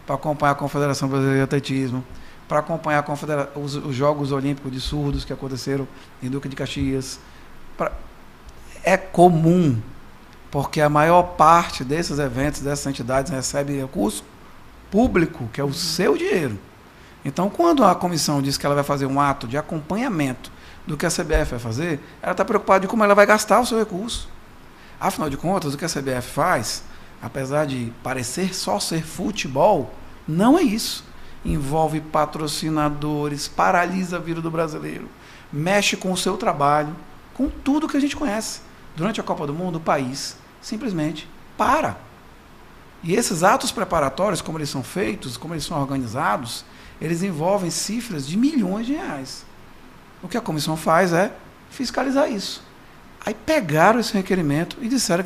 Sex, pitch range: male, 140-195 Hz